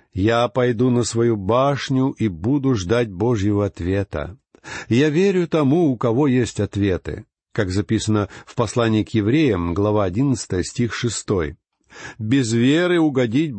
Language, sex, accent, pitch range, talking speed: Russian, male, native, 105-140 Hz, 130 wpm